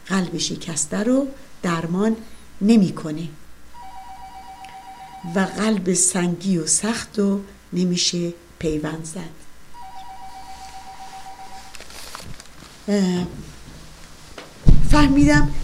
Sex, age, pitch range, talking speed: female, 50-69, 170-215 Hz, 60 wpm